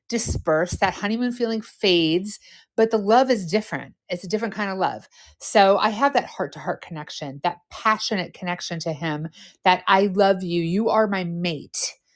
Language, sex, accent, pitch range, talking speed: English, female, American, 180-245 Hz, 185 wpm